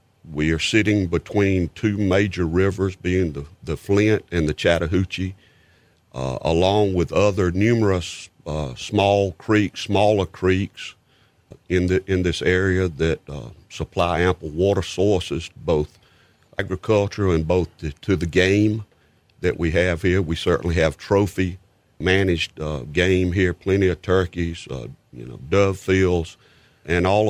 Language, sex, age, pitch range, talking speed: English, male, 50-69, 80-100 Hz, 145 wpm